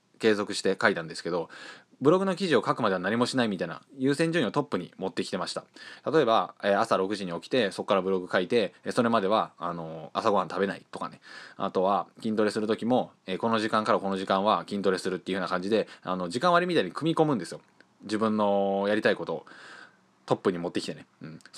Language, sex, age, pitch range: Japanese, male, 20-39, 100-130 Hz